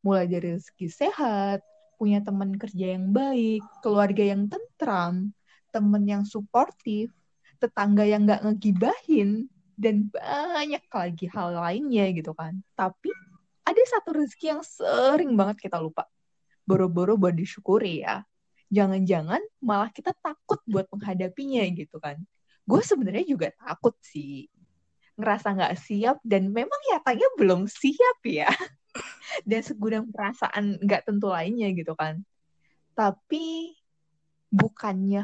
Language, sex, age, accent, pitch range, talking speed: Indonesian, female, 20-39, native, 180-230 Hz, 125 wpm